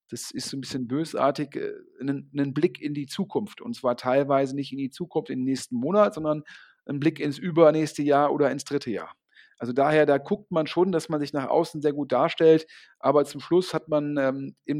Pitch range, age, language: 135-160 Hz, 40-59, German